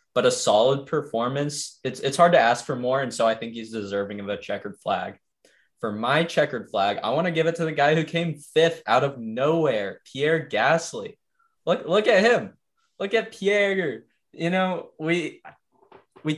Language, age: English, 20-39